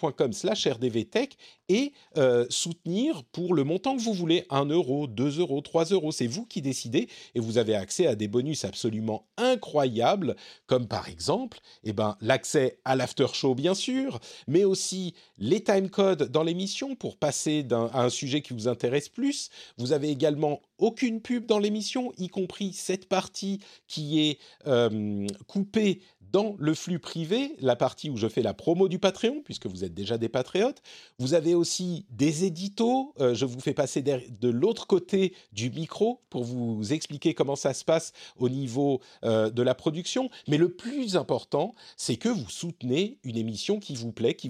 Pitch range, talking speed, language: 125-195 Hz, 180 wpm, French